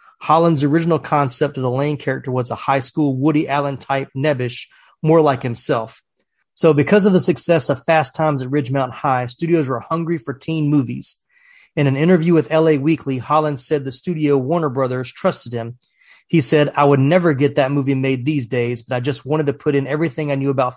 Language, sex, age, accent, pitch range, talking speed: English, male, 30-49, American, 135-160 Hz, 205 wpm